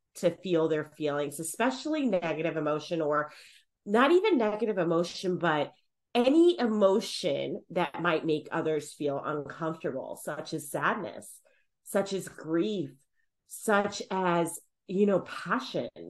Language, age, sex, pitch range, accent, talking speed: English, 30-49, female, 160-230 Hz, American, 120 wpm